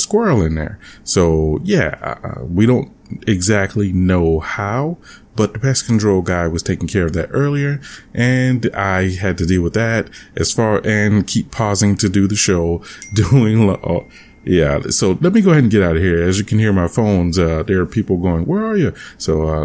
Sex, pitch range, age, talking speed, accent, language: male, 85-110 Hz, 30-49, 205 wpm, American, English